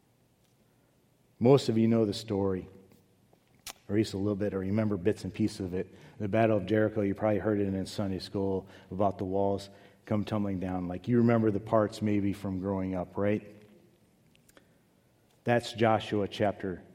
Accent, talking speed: American, 175 wpm